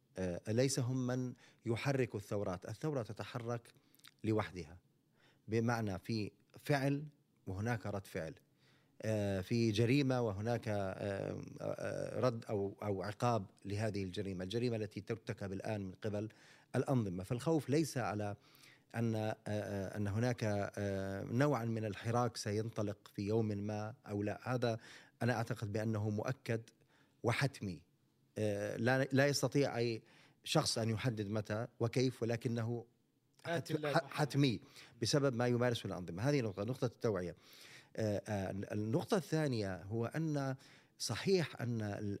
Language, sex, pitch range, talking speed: Arabic, male, 105-135 Hz, 105 wpm